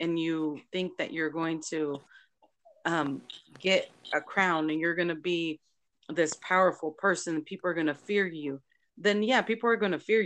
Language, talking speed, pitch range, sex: English, 195 wpm, 170-215 Hz, female